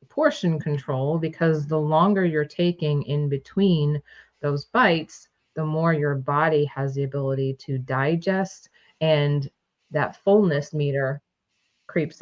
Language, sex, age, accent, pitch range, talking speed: English, female, 30-49, American, 135-160 Hz, 125 wpm